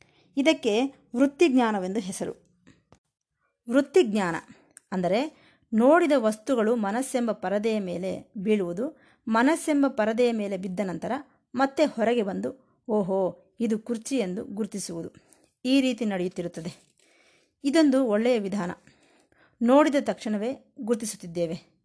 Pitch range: 190-255 Hz